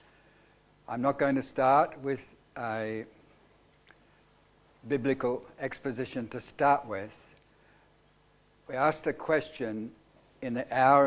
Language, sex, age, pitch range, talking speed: English, male, 60-79, 115-140 Hz, 105 wpm